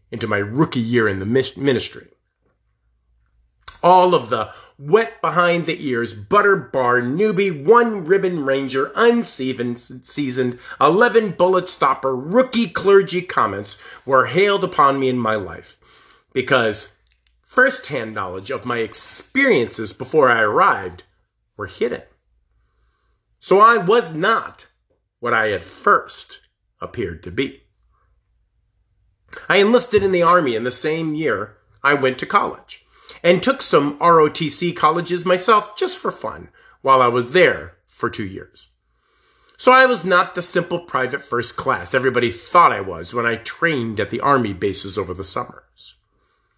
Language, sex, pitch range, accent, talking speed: English, male, 120-195 Hz, American, 130 wpm